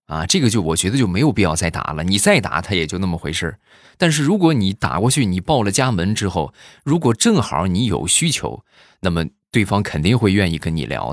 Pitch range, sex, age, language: 80-110 Hz, male, 20-39, Chinese